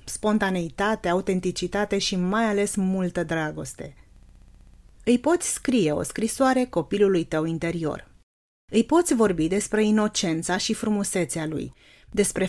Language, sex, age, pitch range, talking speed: Romanian, female, 30-49, 175-220 Hz, 115 wpm